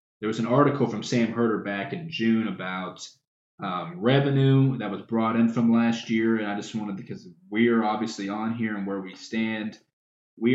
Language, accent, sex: English, American, male